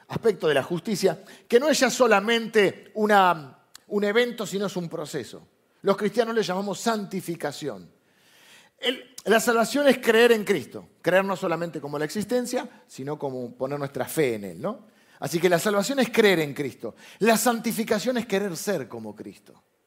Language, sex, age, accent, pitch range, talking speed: Spanish, male, 40-59, Argentinian, 155-225 Hz, 170 wpm